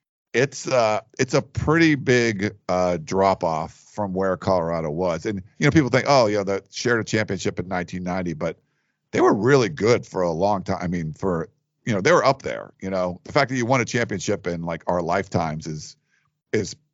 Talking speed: 210 wpm